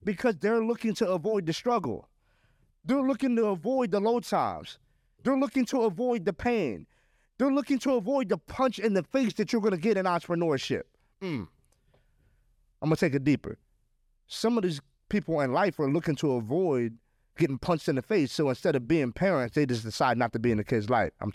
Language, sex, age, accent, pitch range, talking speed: English, male, 30-49, American, 185-270 Hz, 200 wpm